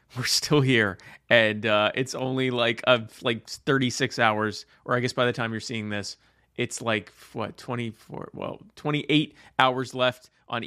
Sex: male